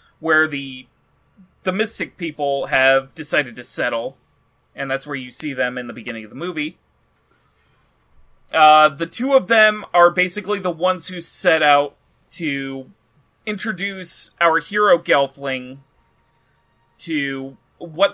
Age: 30-49